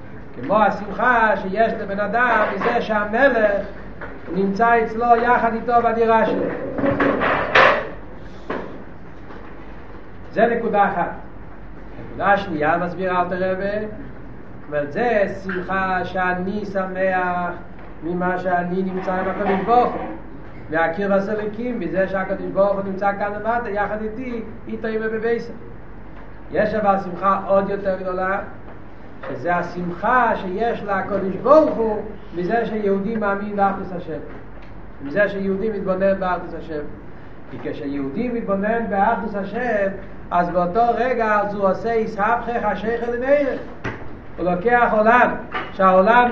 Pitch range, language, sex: 185-230 Hz, Hebrew, male